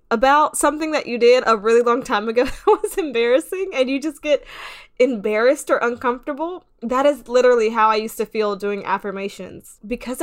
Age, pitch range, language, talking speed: 20-39, 205-265 Hz, English, 180 wpm